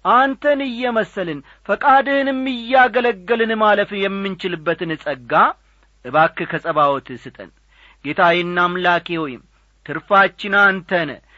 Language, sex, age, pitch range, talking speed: English, male, 40-59, 165-230 Hz, 95 wpm